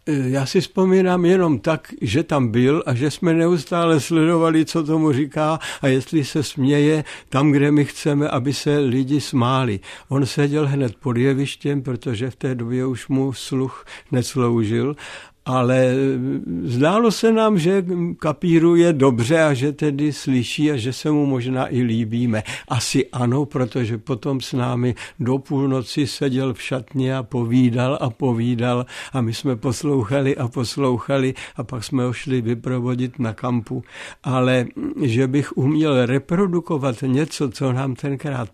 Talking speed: 155 wpm